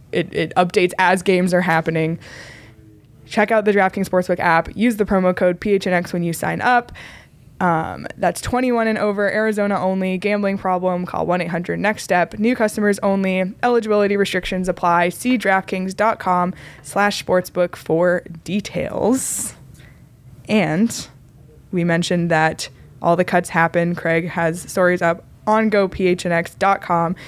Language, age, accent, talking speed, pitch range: English, 20-39, American, 130 wpm, 170-205 Hz